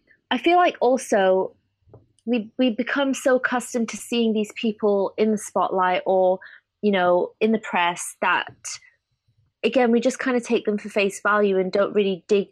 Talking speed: 175 wpm